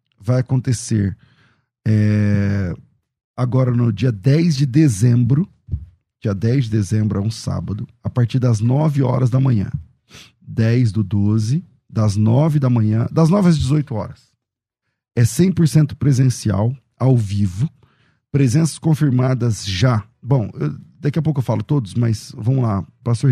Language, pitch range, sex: Portuguese, 110-135 Hz, male